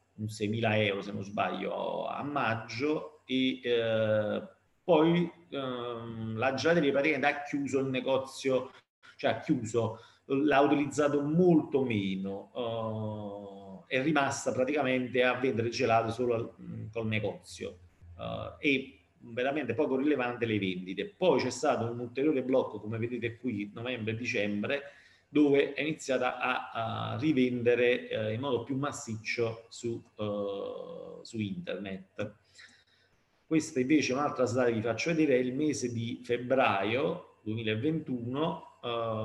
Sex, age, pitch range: male, 40-59, 110-135 Hz